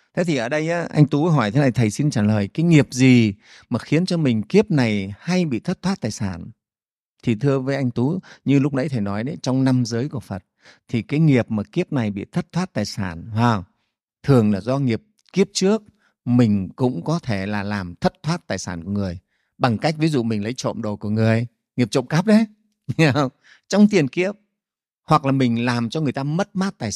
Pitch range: 110-150 Hz